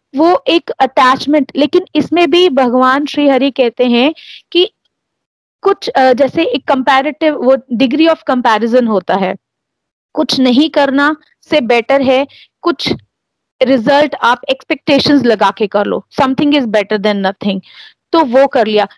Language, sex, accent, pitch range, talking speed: Hindi, female, native, 230-285 Hz, 140 wpm